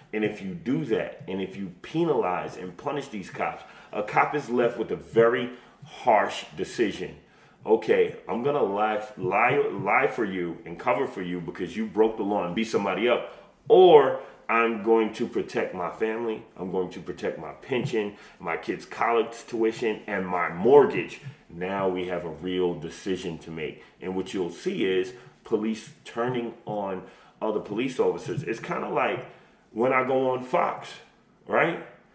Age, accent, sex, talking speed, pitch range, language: 30-49, American, male, 175 wpm, 95-155 Hz, English